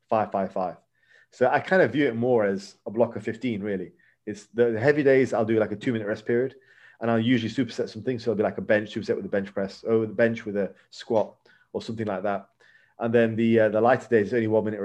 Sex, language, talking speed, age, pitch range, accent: male, English, 270 wpm, 30-49, 110-120 Hz, British